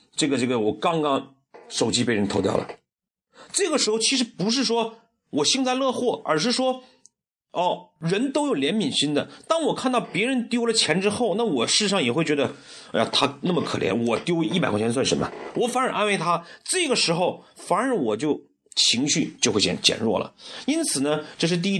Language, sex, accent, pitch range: Chinese, male, native, 145-245 Hz